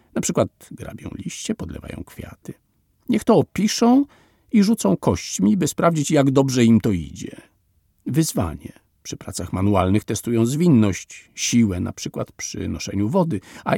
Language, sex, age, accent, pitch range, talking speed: Polish, male, 50-69, native, 105-175 Hz, 140 wpm